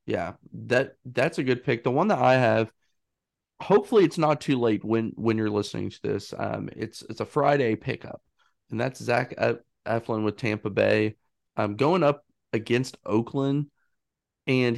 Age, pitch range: 30-49, 105-130 Hz